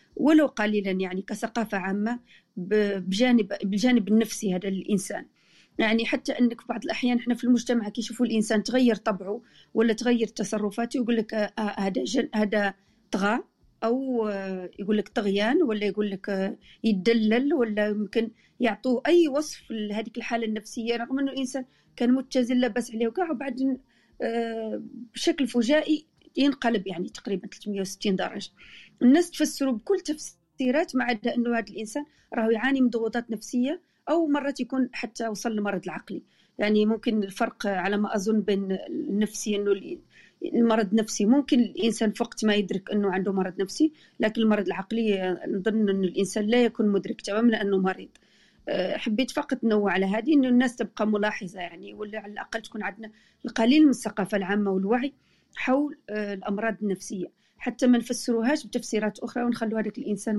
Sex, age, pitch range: female, 40-59, 205-245 Hz